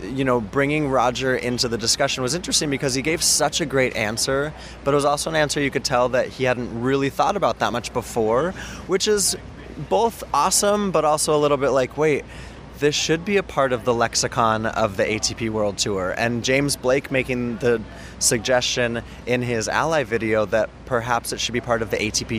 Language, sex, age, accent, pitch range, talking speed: English, male, 20-39, American, 115-140 Hz, 205 wpm